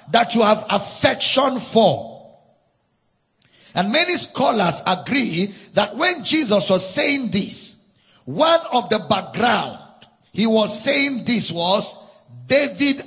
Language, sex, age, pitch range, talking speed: English, male, 50-69, 185-255 Hz, 115 wpm